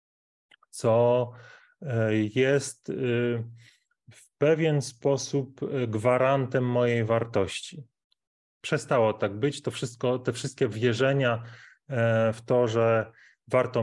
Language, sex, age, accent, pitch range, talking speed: Polish, male, 30-49, native, 115-135 Hz, 80 wpm